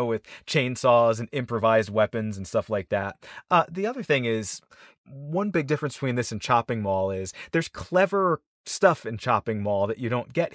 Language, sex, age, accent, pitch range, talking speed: English, male, 30-49, American, 110-135 Hz, 190 wpm